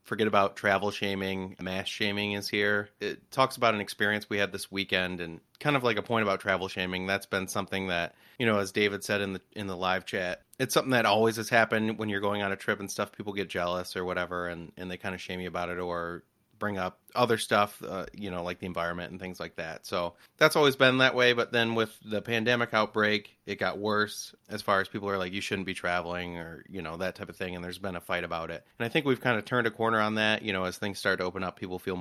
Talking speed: 270 wpm